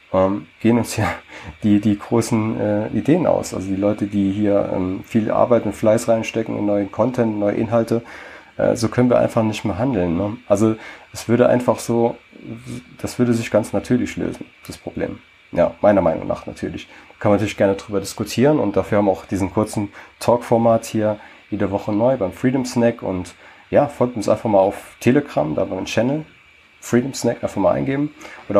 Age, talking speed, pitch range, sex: 30-49, 195 wpm, 95-115 Hz, male